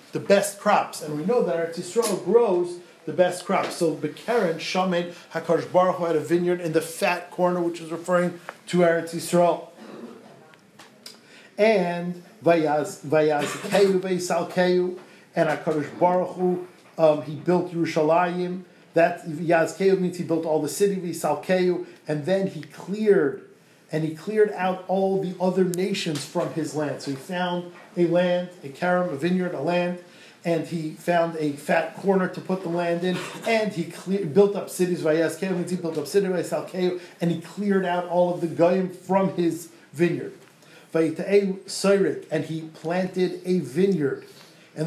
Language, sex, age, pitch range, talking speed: English, male, 40-59, 165-185 Hz, 150 wpm